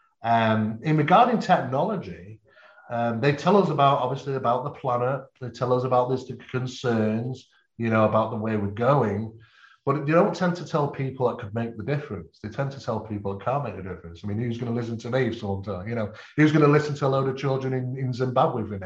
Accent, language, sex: British, English, male